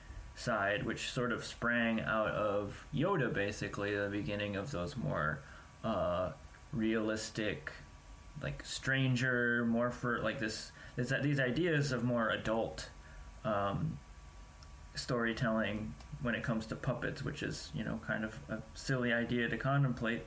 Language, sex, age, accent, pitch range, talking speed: English, male, 20-39, American, 105-125 Hz, 135 wpm